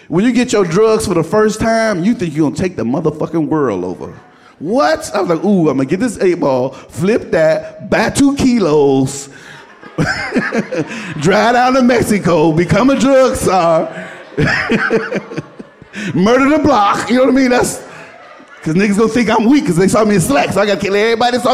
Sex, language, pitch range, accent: male, English, 175-255 Hz, American